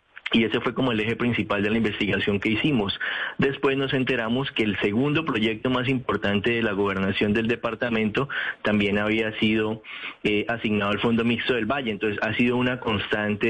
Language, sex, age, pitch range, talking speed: Spanish, male, 30-49, 105-120 Hz, 180 wpm